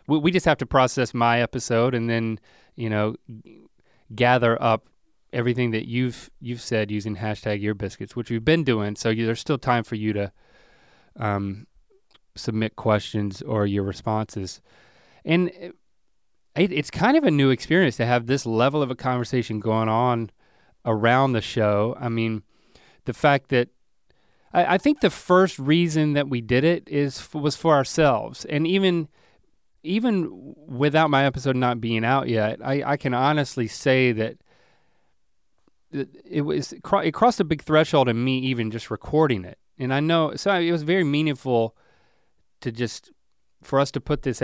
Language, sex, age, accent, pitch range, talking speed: English, male, 30-49, American, 110-145 Hz, 165 wpm